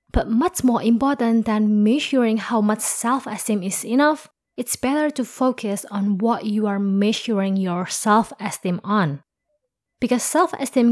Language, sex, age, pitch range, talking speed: English, female, 20-39, 200-250 Hz, 135 wpm